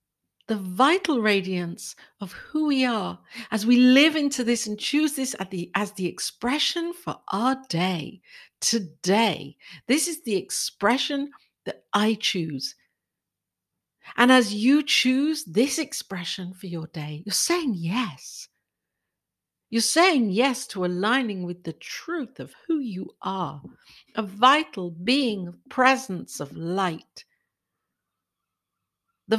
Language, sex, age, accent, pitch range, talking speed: English, female, 60-79, British, 200-260 Hz, 125 wpm